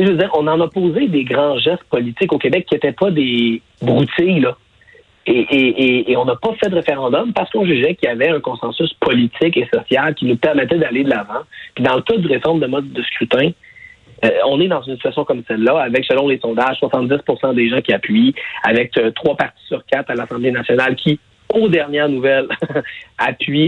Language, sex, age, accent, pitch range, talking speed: French, male, 40-59, Canadian, 120-165 Hz, 220 wpm